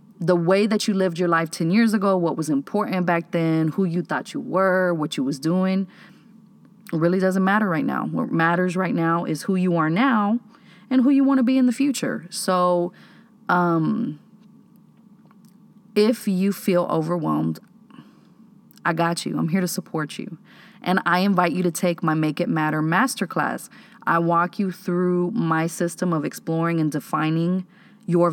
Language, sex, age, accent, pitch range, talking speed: English, female, 30-49, American, 170-215 Hz, 175 wpm